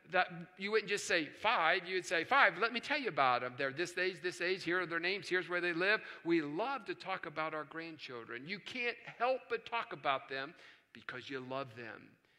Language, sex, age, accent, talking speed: English, male, 50-69, American, 220 wpm